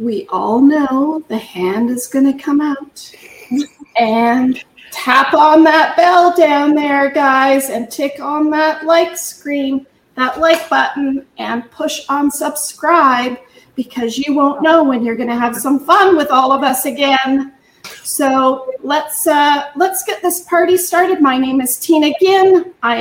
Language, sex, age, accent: English, female, 40-59, American